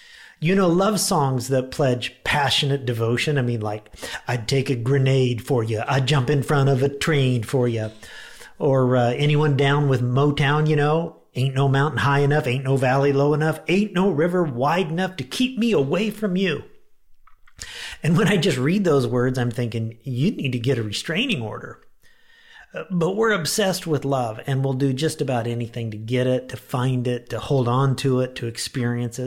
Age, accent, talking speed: 50-69, American, 195 wpm